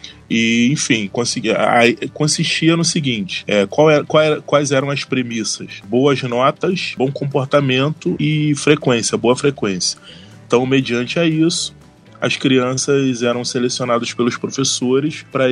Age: 20-39